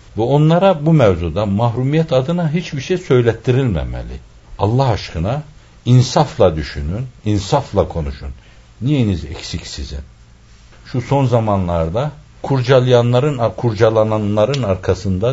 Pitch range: 90-145 Hz